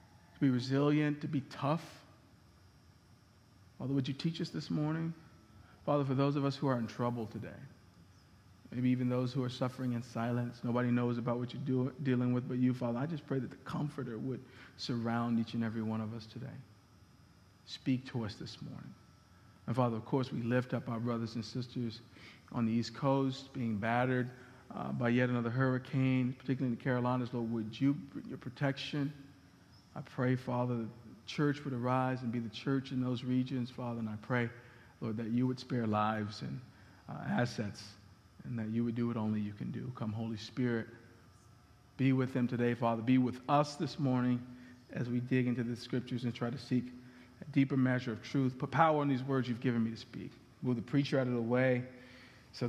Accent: American